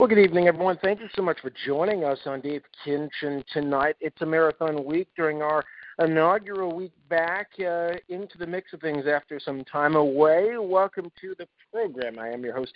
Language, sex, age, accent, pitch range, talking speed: English, male, 50-69, American, 145-170 Hz, 200 wpm